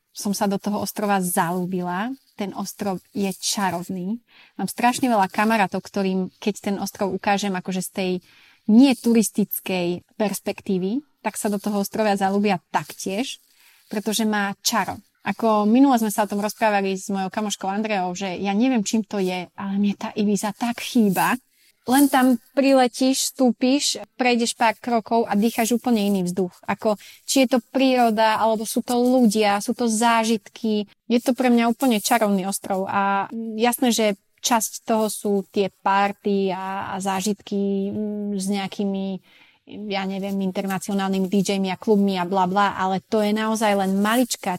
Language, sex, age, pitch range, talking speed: Slovak, female, 20-39, 195-230 Hz, 155 wpm